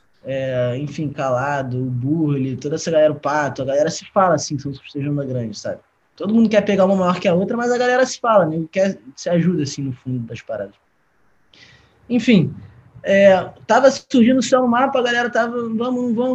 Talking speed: 200 wpm